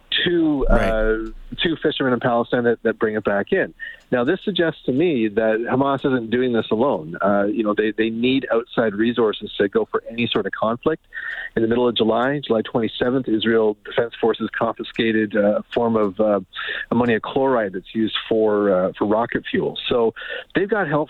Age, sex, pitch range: 40-59, male, 110-130 Hz